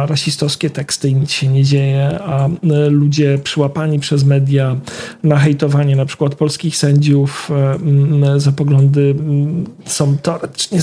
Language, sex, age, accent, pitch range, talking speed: Polish, male, 40-59, native, 140-160 Hz, 120 wpm